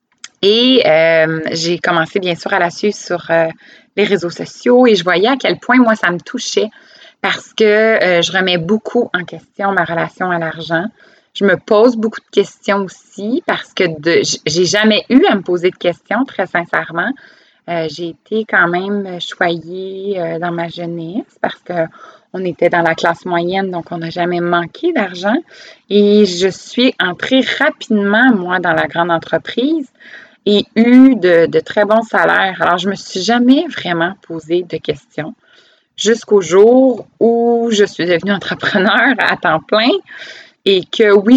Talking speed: 175 wpm